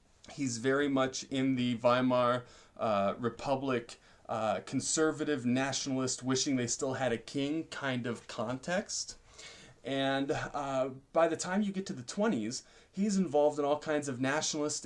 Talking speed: 150 wpm